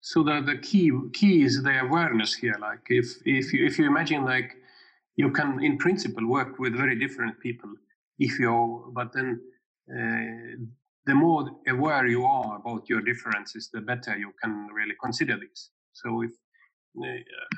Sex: male